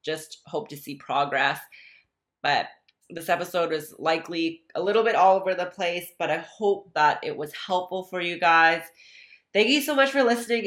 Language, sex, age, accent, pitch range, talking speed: English, female, 30-49, American, 155-200 Hz, 185 wpm